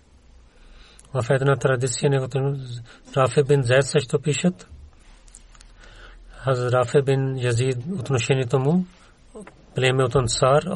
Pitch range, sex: 125-140 Hz, male